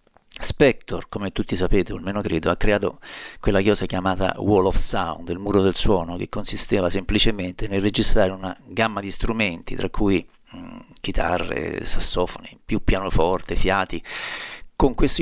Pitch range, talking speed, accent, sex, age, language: 95-115 Hz, 150 wpm, native, male, 50-69, Italian